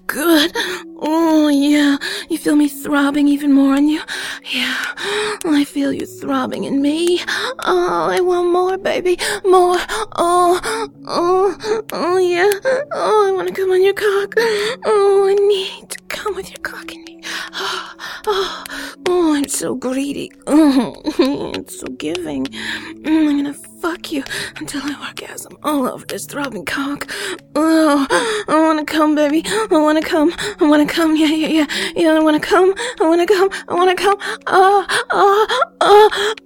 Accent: American